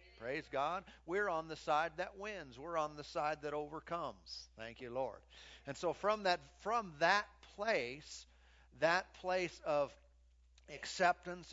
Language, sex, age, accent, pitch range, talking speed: English, male, 50-69, American, 120-180 Hz, 145 wpm